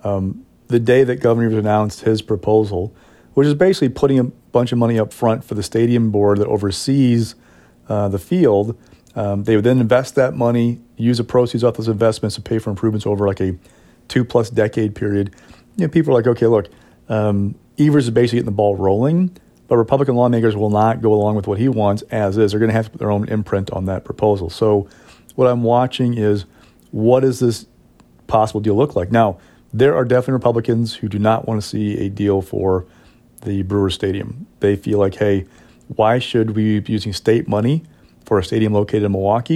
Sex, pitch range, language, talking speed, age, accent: male, 100-120 Hz, English, 210 wpm, 40-59, American